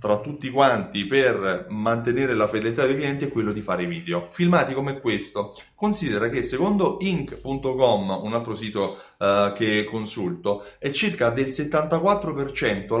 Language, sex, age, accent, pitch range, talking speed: Italian, male, 30-49, native, 115-160 Hz, 140 wpm